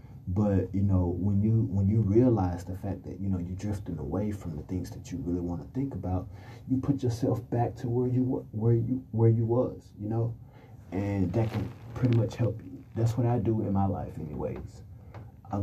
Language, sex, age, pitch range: English, male, 30-49, 95-115 Hz